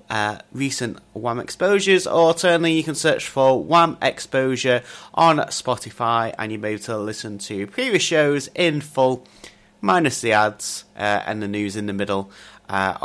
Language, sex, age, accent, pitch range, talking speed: English, male, 30-49, British, 105-150 Hz, 170 wpm